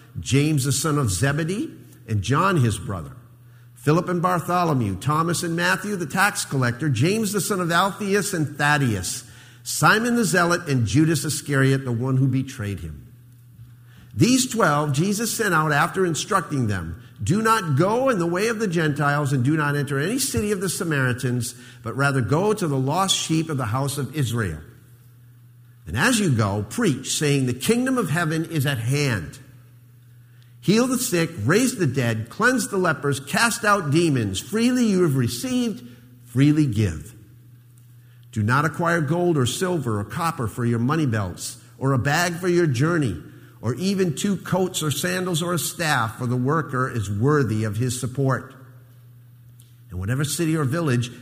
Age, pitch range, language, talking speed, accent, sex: 50-69, 120-170 Hz, English, 170 wpm, American, male